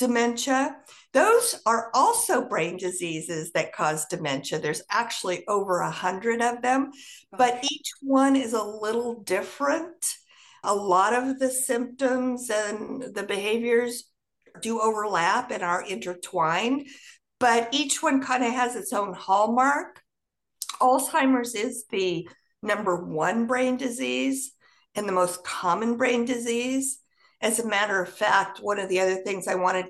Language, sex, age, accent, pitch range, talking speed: English, female, 50-69, American, 190-255 Hz, 140 wpm